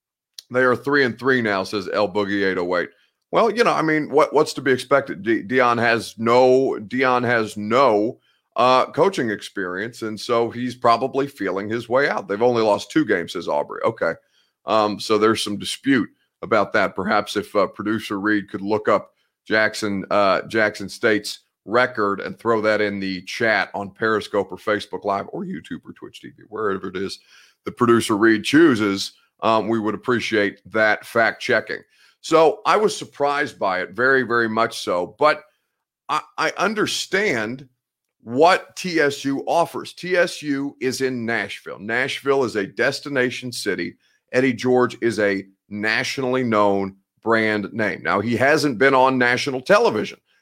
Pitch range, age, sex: 105-130 Hz, 30-49, male